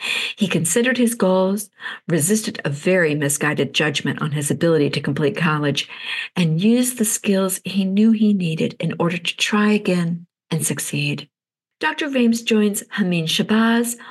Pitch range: 165-225 Hz